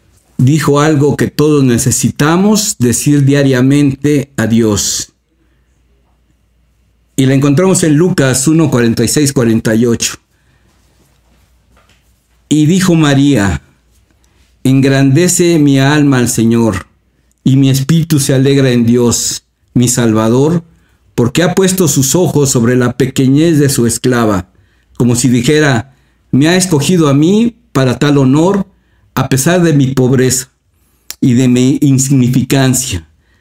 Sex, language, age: male, Spanish, 50-69